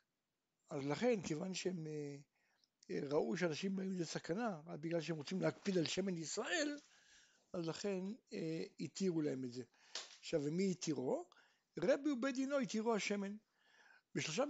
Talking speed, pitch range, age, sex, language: 135 wpm, 165-230 Hz, 60-79, male, Hebrew